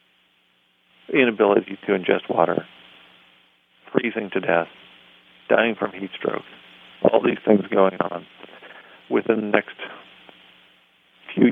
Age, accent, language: 50-69, American, English